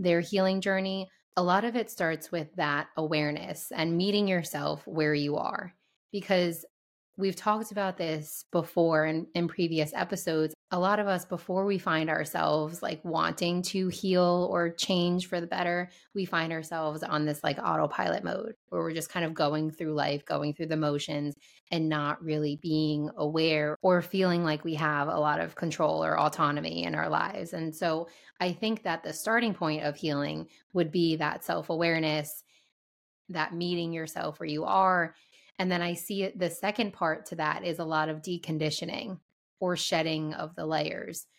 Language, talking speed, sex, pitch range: English, 175 wpm, female, 155-180 Hz